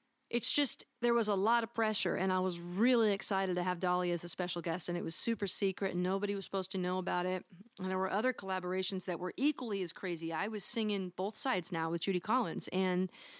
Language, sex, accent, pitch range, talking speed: English, female, American, 175-210 Hz, 235 wpm